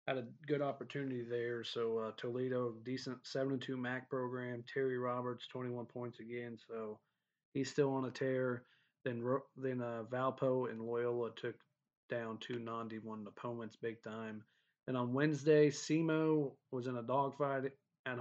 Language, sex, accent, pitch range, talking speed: English, male, American, 120-135 Hz, 160 wpm